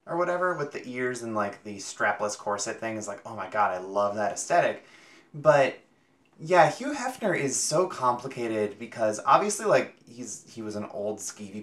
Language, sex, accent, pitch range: English, male, American, 105-155 Hz